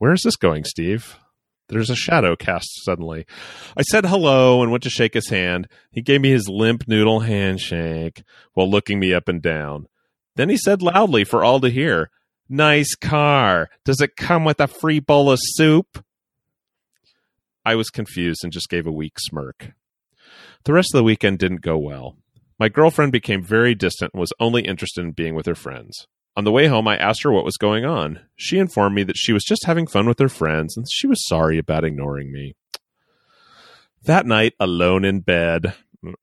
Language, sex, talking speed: English, male, 195 wpm